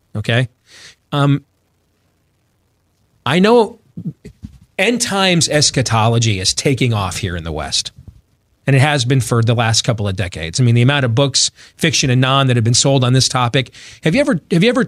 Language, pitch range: English, 105-140 Hz